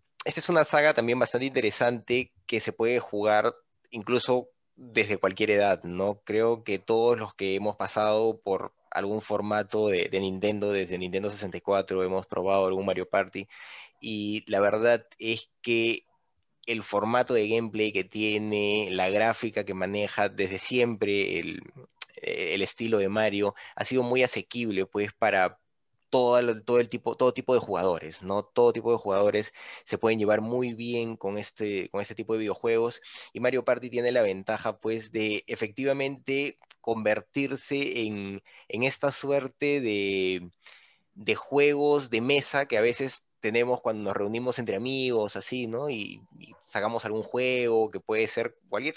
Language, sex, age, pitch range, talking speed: Spanish, male, 20-39, 100-120 Hz, 160 wpm